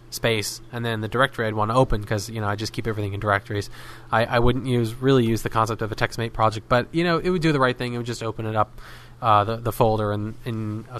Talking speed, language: 290 wpm, English